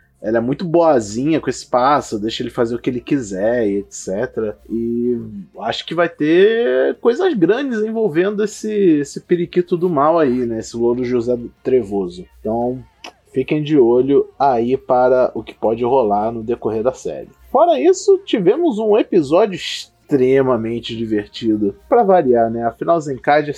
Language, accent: Portuguese, Brazilian